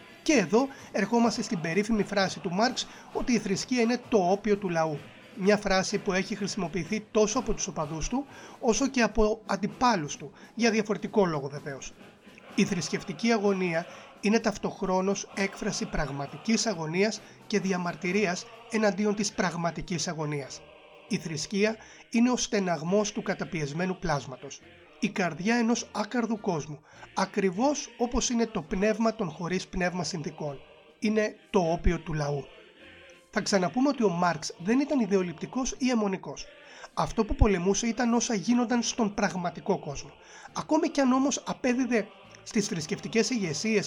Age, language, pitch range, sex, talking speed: 30-49, Greek, 175-225 Hz, male, 140 wpm